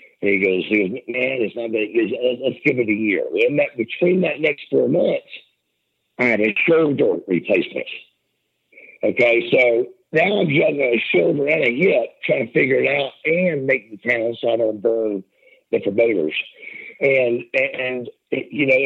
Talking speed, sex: 180 wpm, male